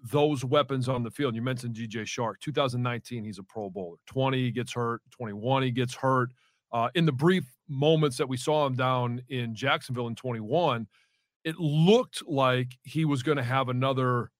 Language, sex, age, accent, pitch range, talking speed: English, male, 40-59, American, 120-145 Hz, 190 wpm